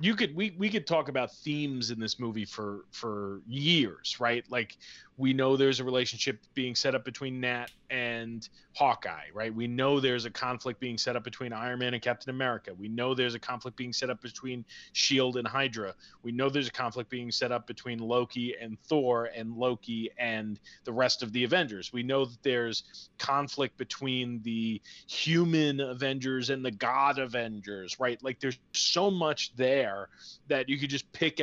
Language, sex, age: English, male, 30-49